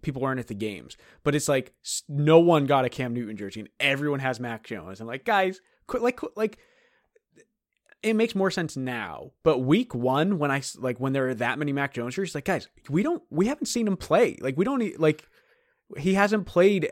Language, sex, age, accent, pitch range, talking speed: English, male, 20-39, American, 120-160 Hz, 220 wpm